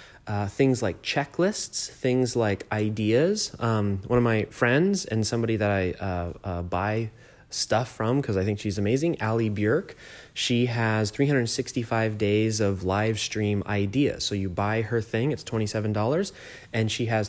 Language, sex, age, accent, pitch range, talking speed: English, male, 20-39, American, 105-125 Hz, 160 wpm